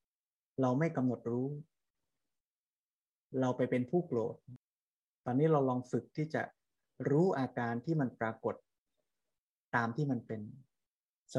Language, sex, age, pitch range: Thai, male, 20-39, 115-135 Hz